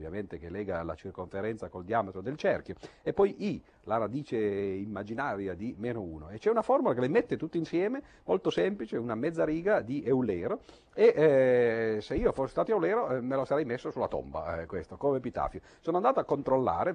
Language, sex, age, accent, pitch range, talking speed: Italian, male, 50-69, native, 90-125 Hz, 200 wpm